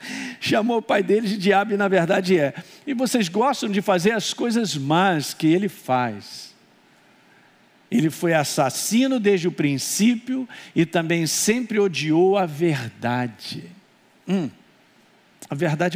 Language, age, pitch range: Portuguese, 50-69, 145-215 Hz